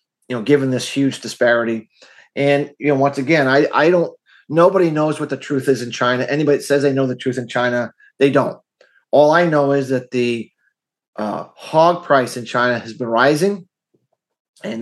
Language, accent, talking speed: English, American, 190 wpm